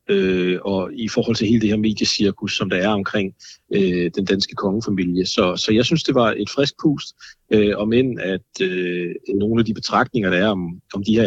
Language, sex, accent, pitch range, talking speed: Danish, male, native, 100-115 Hz, 195 wpm